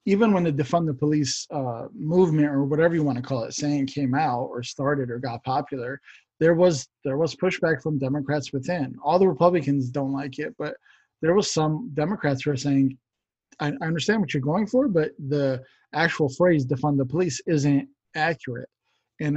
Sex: male